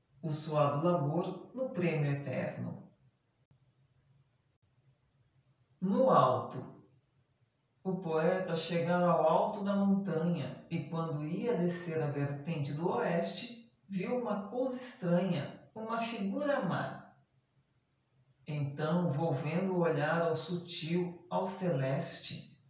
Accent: Brazilian